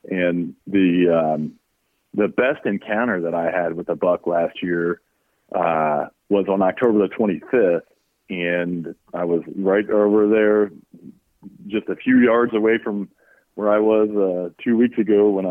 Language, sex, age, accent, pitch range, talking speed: English, male, 40-59, American, 90-115 Hz, 155 wpm